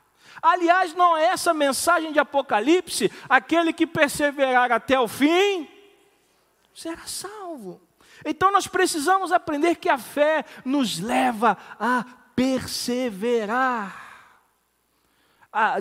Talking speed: 105 wpm